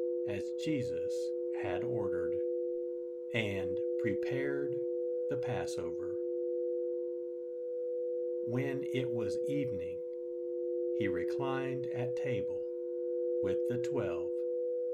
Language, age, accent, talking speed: English, 60-79, American, 75 wpm